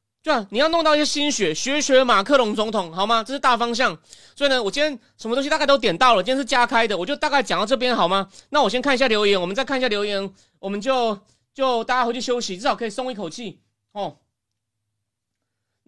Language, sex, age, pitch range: Chinese, male, 30-49, 190-270 Hz